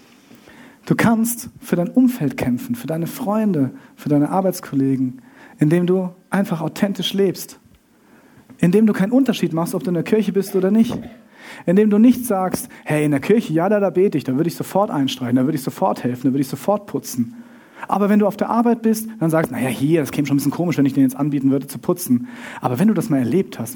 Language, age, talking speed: German, 40-59, 230 wpm